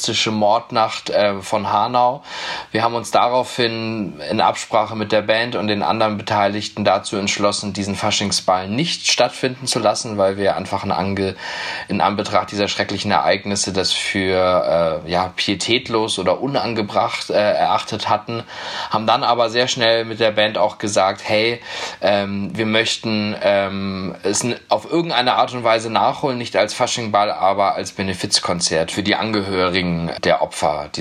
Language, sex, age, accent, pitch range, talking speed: German, male, 20-39, German, 100-120 Hz, 155 wpm